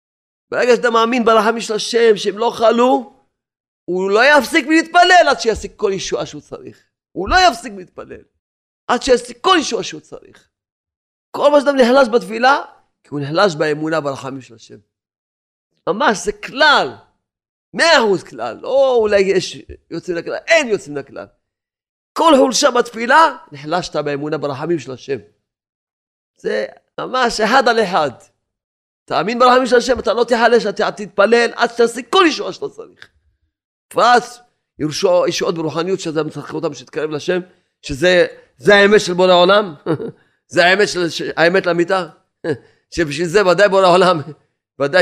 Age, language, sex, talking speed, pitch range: 40-59, Hebrew, male, 145 wpm, 150-235 Hz